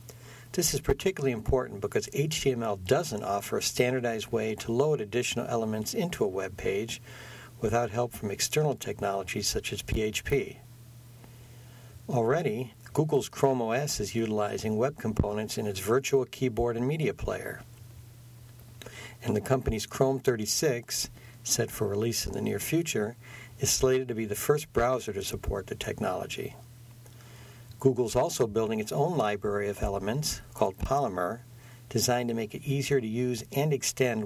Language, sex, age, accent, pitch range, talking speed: English, male, 60-79, American, 110-125 Hz, 145 wpm